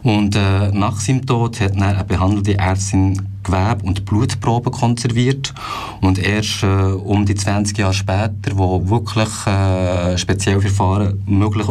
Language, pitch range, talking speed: German, 95-110 Hz, 150 wpm